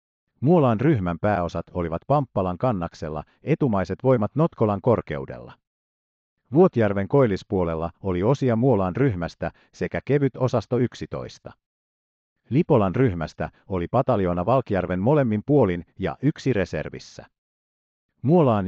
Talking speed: 100 wpm